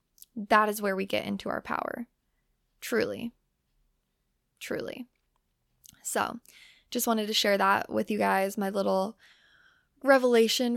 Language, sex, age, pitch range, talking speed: English, female, 10-29, 185-235 Hz, 125 wpm